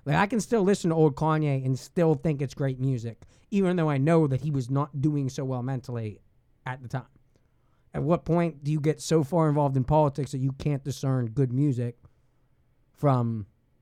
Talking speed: 205 wpm